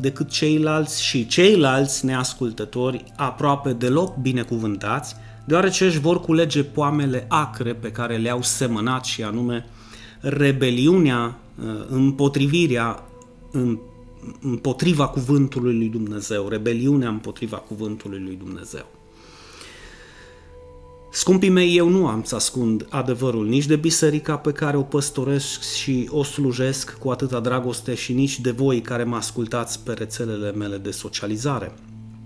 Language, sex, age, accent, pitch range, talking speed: Romanian, male, 30-49, native, 110-140 Hz, 120 wpm